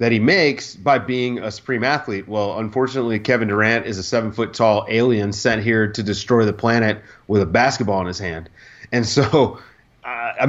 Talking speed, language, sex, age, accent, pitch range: 185 wpm, English, male, 30-49, American, 110-135 Hz